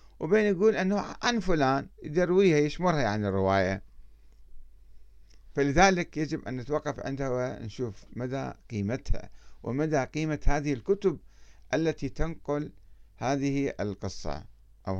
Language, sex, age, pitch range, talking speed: Arabic, male, 60-79, 95-150 Hz, 105 wpm